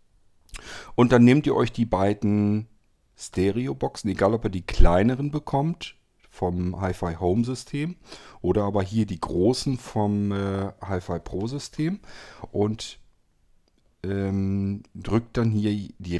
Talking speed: 110 wpm